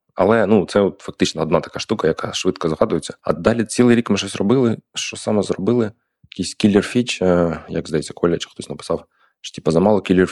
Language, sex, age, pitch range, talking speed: Ukrainian, male, 20-39, 85-95 Hz, 190 wpm